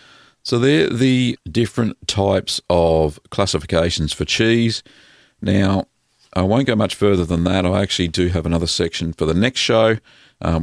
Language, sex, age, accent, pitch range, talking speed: English, male, 50-69, Australian, 80-100 Hz, 160 wpm